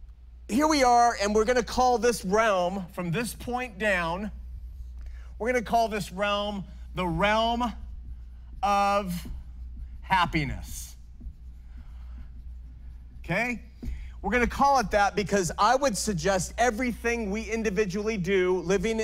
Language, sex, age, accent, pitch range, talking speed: English, male, 40-59, American, 155-235 Hz, 115 wpm